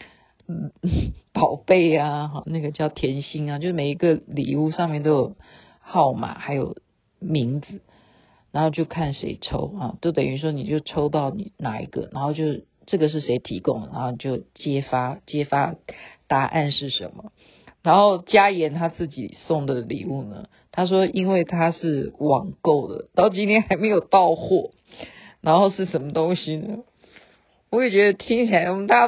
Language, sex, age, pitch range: Chinese, female, 50-69, 150-205 Hz